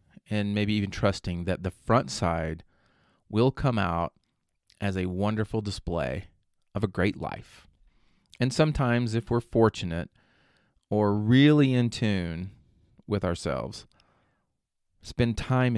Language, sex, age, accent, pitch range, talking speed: English, male, 30-49, American, 90-115 Hz, 120 wpm